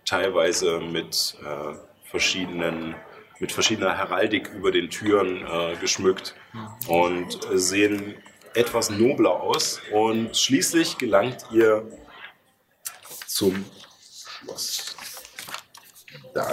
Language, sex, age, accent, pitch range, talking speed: German, male, 40-59, German, 95-120 Hz, 90 wpm